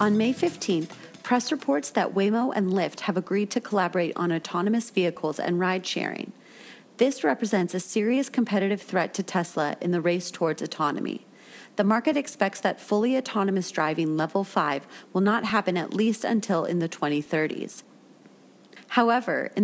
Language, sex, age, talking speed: English, female, 30-49, 155 wpm